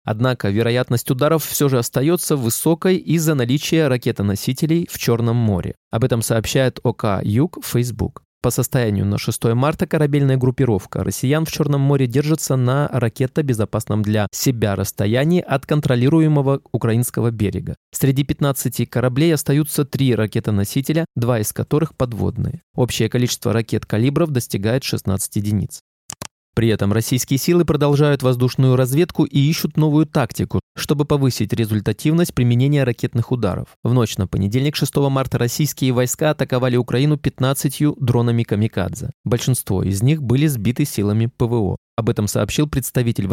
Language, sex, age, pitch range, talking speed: Russian, male, 20-39, 115-150 Hz, 135 wpm